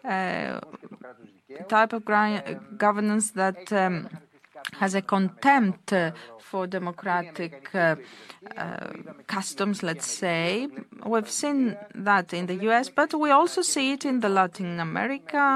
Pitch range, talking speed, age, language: 180-245 Hz, 130 wpm, 20-39, Greek